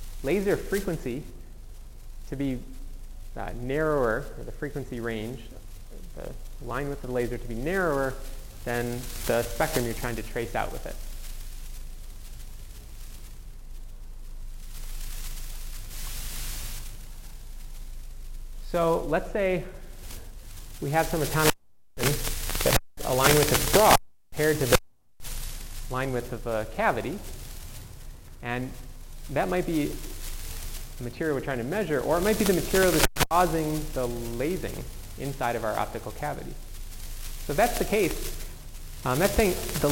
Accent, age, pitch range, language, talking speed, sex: American, 30-49, 105-140 Hz, English, 125 wpm, male